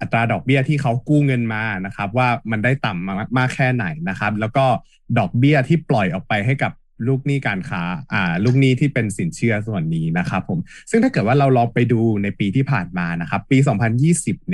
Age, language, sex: 20-39, Thai, male